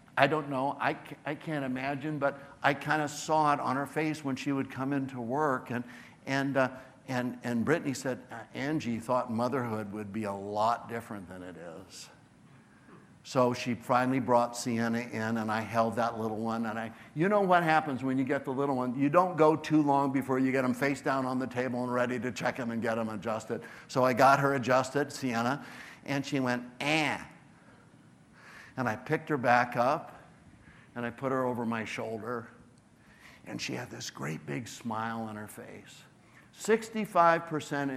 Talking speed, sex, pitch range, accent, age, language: 190 wpm, male, 120-150 Hz, American, 60-79, English